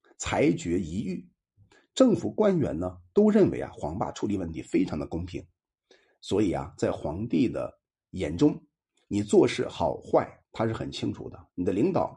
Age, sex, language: 50-69, male, Chinese